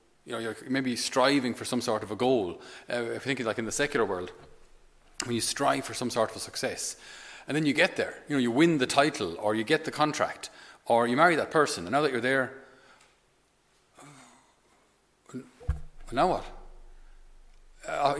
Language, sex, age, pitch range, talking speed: English, male, 40-59, 115-140 Hz, 200 wpm